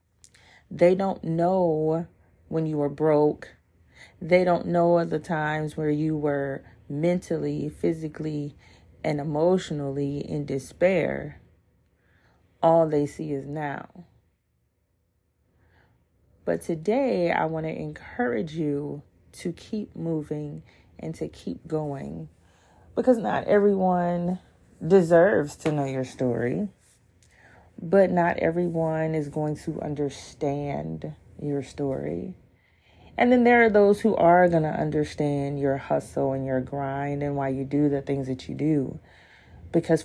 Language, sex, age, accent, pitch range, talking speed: English, female, 30-49, American, 115-160 Hz, 125 wpm